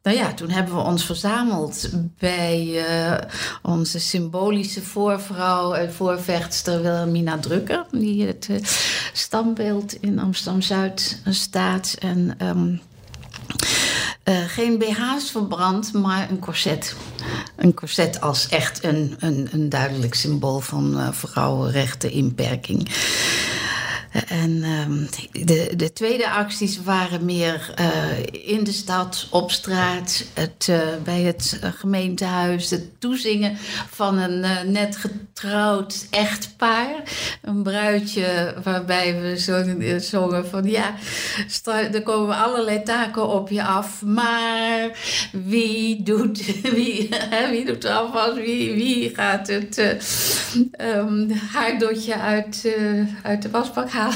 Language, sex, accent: Dutch, female, Dutch